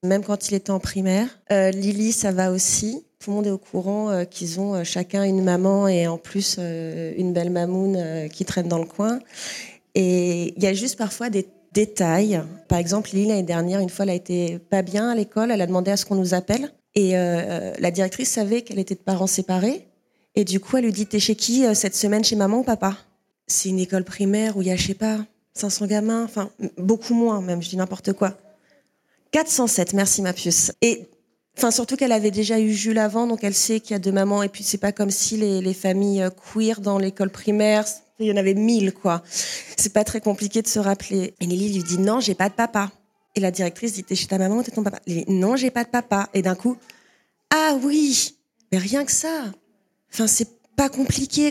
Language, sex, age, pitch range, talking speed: French, female, 30-49, 185-220 Hz, 230 wpm